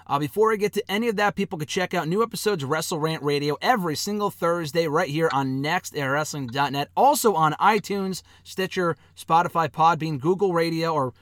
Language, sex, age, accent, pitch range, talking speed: English, male, 30-49, American, 145-180 Hz, 180 wpm